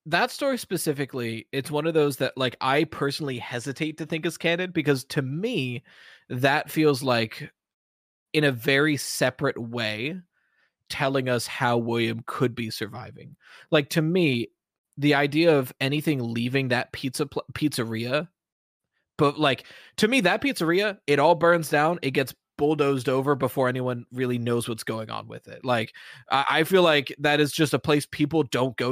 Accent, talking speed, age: American, 170 wpm, 20-39